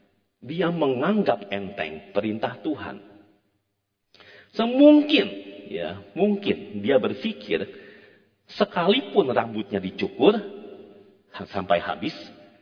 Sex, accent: male, native